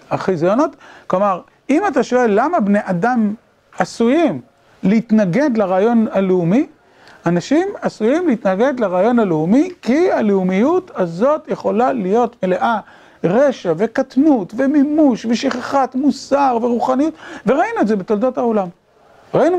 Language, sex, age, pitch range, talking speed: Hebrew, male, 40-59, 190-270 Hz, 105 wpm